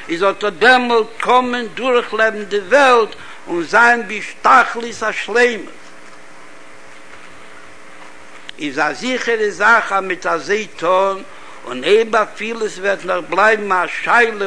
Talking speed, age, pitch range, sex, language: 105 wpm, 60-79, 175-240 Hz, male, Hebrew